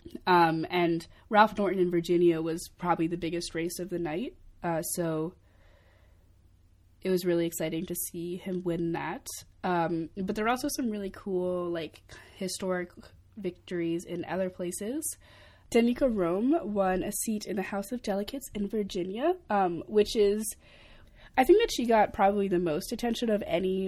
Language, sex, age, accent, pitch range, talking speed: English, female, 20-39, American, 175-230 Hz, 165 wpm